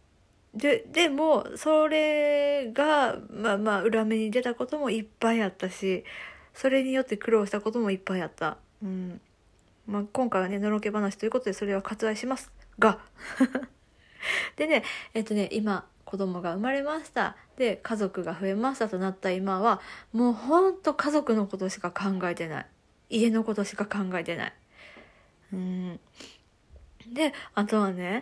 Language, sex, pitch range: Japanese, female, 190-240 Hz